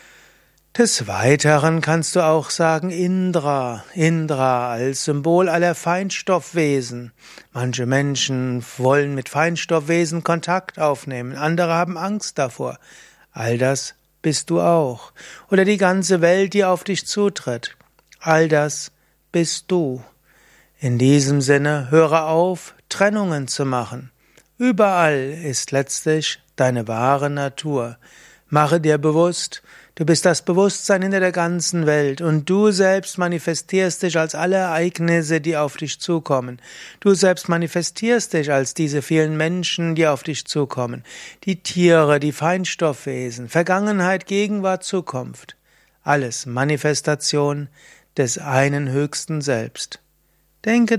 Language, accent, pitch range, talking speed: German, German, 140-180 Hz, 120 wpm